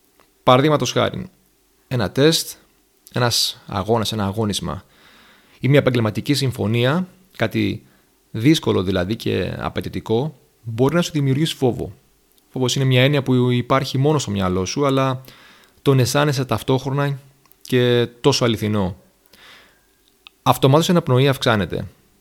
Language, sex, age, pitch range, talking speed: Greek, male, 30-49, 110-140 Hz, 115 wpm